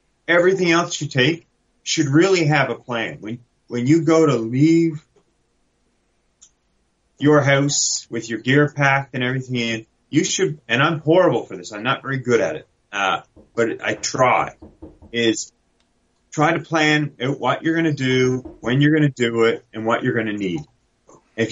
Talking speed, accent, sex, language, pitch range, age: 165 wpm, American, male, English, 110-150 Hz, 30-49